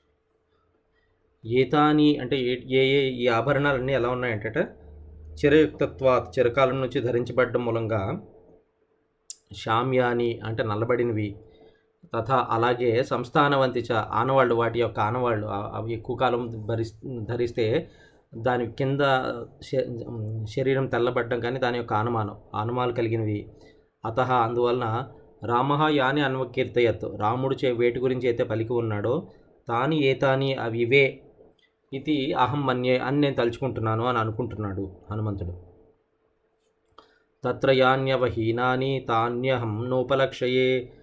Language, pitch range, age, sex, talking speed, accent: Telugu, 115-130 Hz, 20-39, male, 90 wpm, native